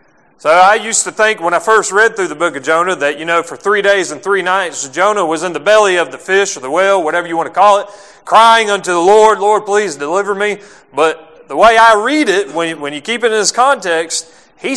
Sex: male